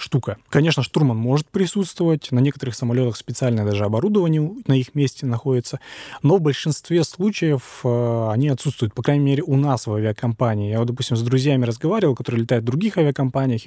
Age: 20-39